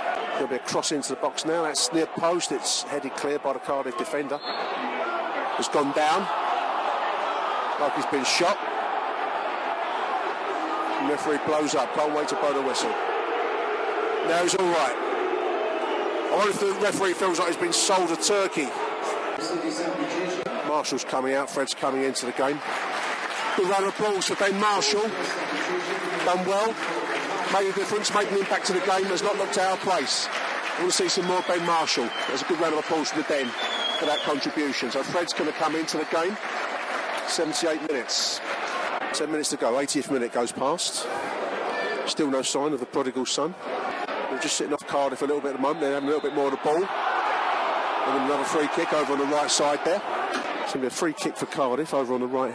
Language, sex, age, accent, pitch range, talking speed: English, male, 40-59, British, 140-200 Hz, 195 wpm